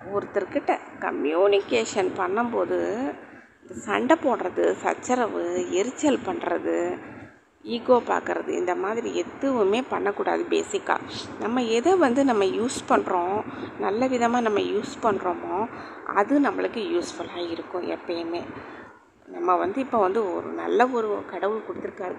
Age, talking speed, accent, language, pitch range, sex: 30-49, 110 wpm, native, Tamil, 175-250 Hz, female